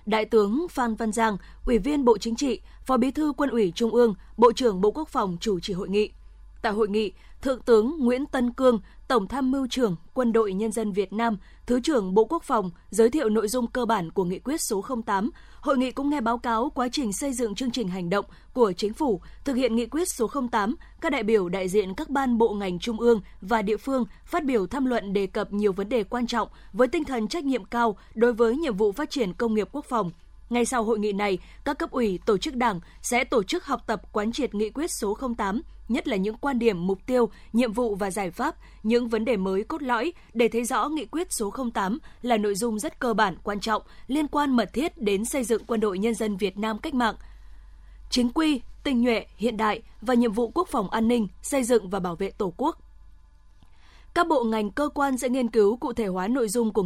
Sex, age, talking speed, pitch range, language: female, 20-39, 240 wpm, 210-255 Hz, Vietnamese